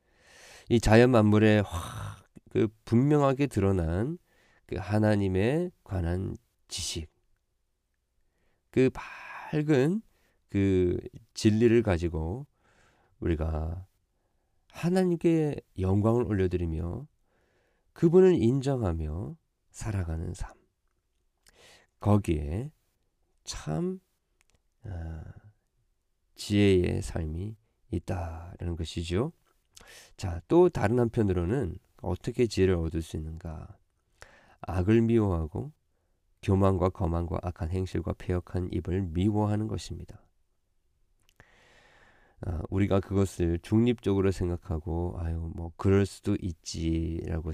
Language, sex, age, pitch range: Korean, male, 40-59, 85-115 Hz